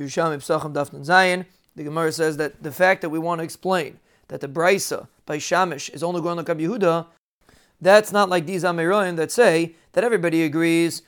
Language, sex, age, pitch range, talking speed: English, male, 40-59, 160-185 Hz, 170 wpm